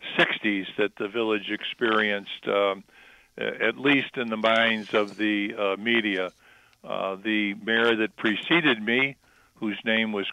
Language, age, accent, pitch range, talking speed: English, 50-69, American, 105-115 Hz, 140 wpm